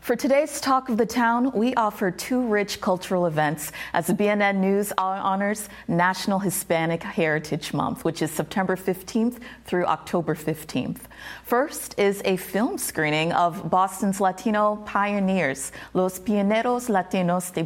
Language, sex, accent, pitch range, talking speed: English, female, American, 175-210 Hz, 140 wpm